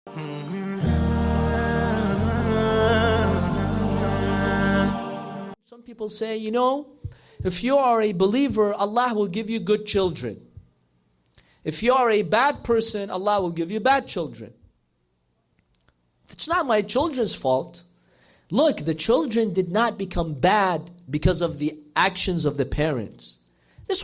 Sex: male